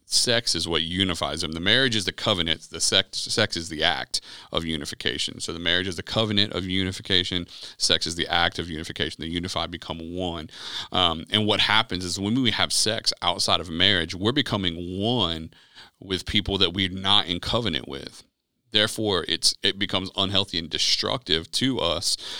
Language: English